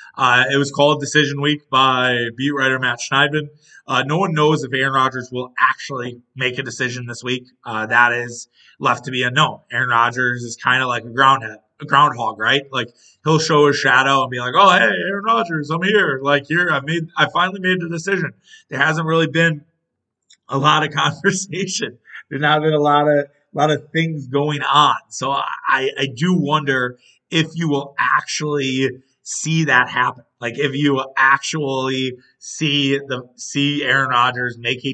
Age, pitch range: 30-49, 125-150 Hz